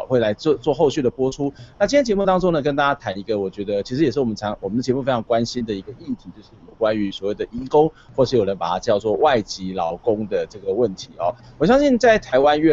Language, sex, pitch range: Chinese, male, 115-155 Hz